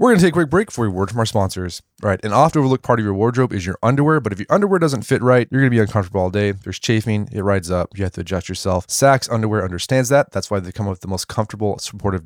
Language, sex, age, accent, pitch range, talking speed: English, male, 20-39, American, 95-125 Hz, 310 wpm